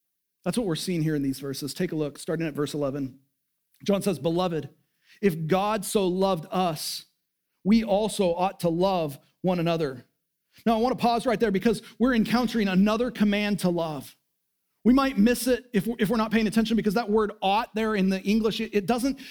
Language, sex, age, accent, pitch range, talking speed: English, male, 40-59, American, 180-230 Hz, 195 wpm